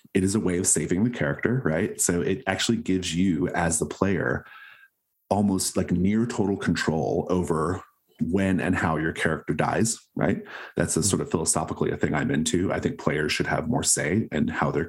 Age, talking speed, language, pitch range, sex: 30-49, 200 wpm, English, 80-100 Hz, male